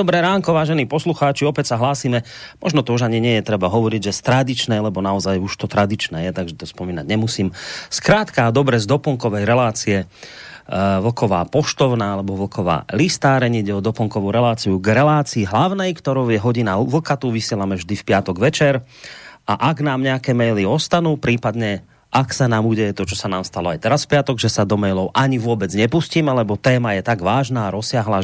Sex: male